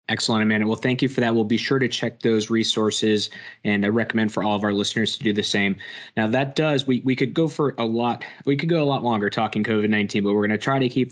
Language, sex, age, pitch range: English, male, 20-39, 105-120 Hz